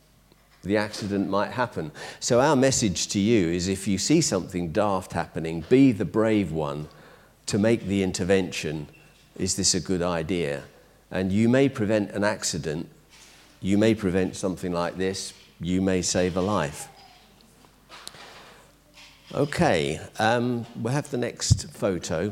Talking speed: 145 wpm